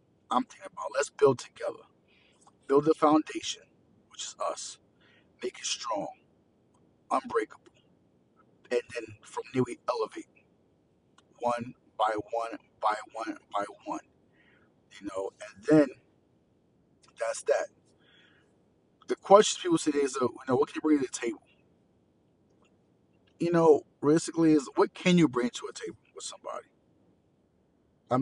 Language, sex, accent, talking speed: English, male, American, 135 wpm